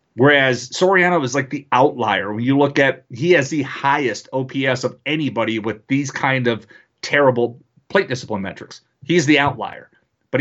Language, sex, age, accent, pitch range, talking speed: English, male, 30-49, American, 125-160 Hz, 165 wpm